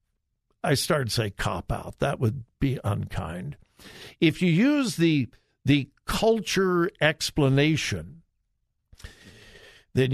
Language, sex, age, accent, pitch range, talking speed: English, male, 60-79, American, 130-185 Hz, 105 wpm